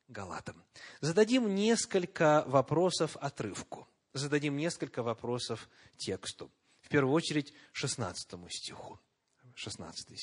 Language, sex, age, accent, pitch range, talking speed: Russian, male, 30-49, native, 120-195 Hz, 90 wpm